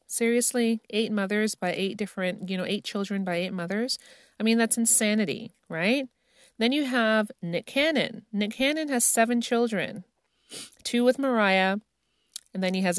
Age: 40-59